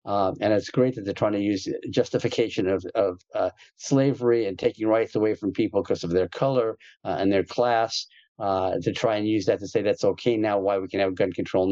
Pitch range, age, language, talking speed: 100-120 Hz, 50-69, English, 230 wpm